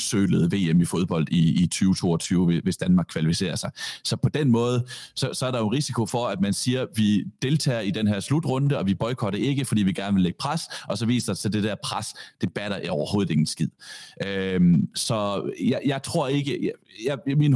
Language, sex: Danish, male